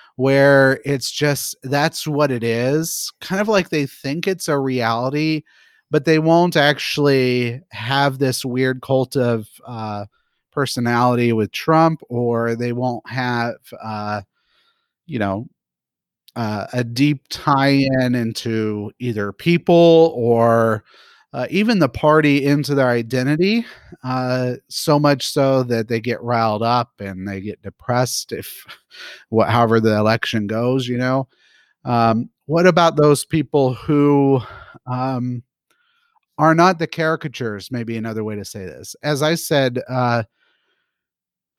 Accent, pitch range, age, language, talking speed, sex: American, 120-150 Hz, 30-49, English, 130 wpm, male